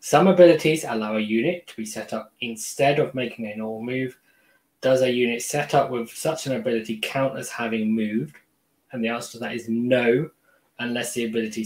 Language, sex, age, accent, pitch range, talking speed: English, male, 20-39, British, 110-130 Hz, 195 wpm